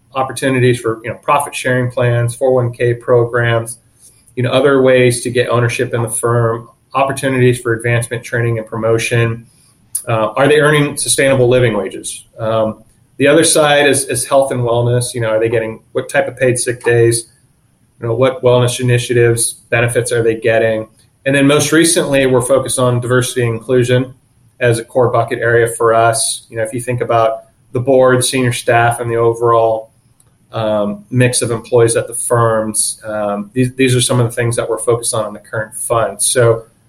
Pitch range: 115-130 Hz